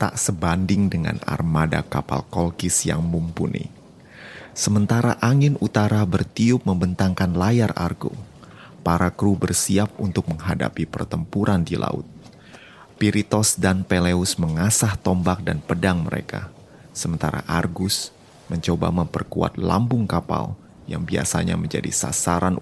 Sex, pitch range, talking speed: male, 85-115 Hz, 110 wpm